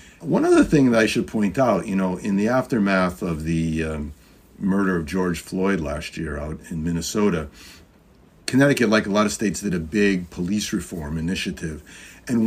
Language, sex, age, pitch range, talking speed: English, male, 50-69, 90-110 Hz, 185 wpm